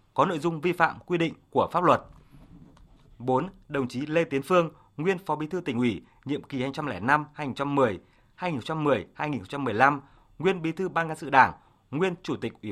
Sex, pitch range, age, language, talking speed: male, 125-160 Hz, 20-39, Vietnamese, 175 wpm